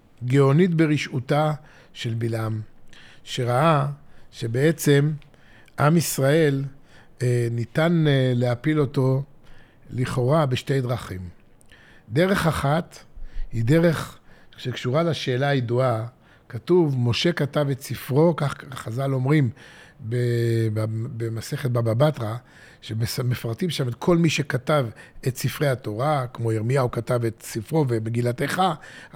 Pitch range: 130-175 Hz